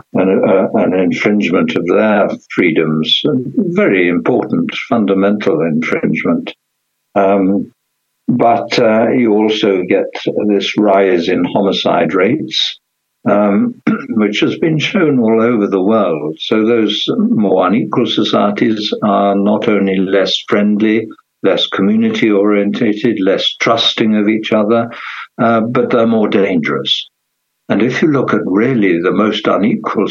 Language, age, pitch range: English, 60-79, 105-130 Hz